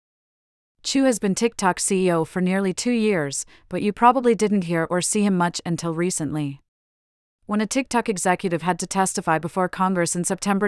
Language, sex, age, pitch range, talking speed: English, female, 30-49, 170-195 Hz, 175 wpm